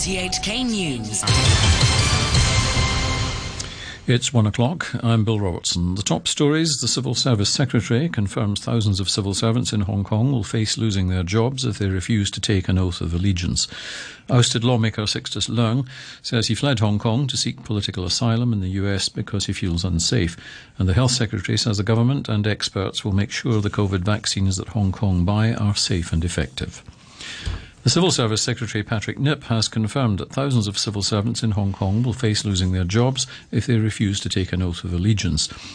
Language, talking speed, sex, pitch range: English, 180 wpm, male, 95-115 Hz